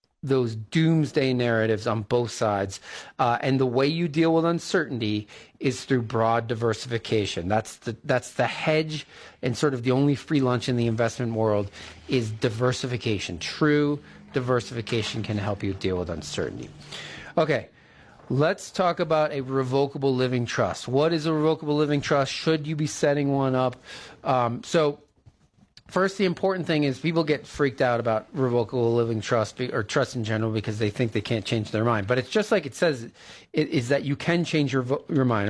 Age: 40-59